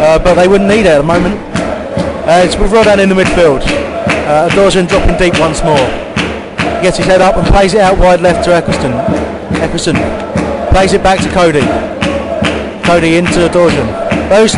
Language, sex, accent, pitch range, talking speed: English, male, British, 165-195 Hz, 185 wpm